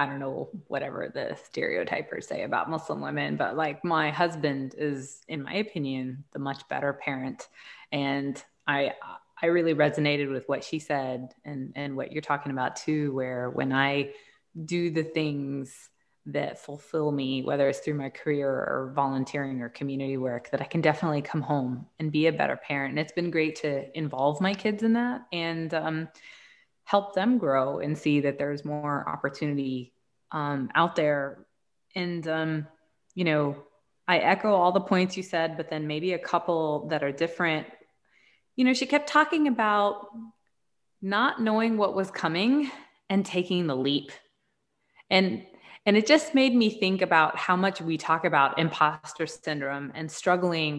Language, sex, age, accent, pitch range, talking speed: English, female, 20-39, American, 140-185 Hz, 170 wpm